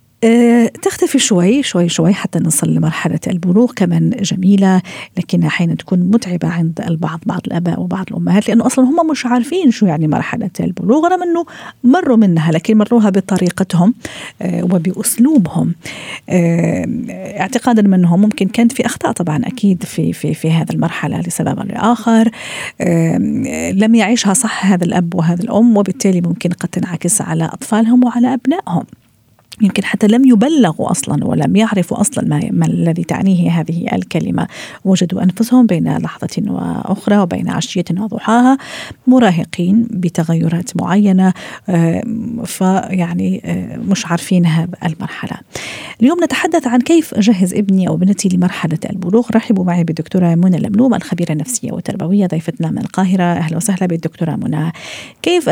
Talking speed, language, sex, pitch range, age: 135 wpm, Arabic, female, 175-230 Hz, 50-69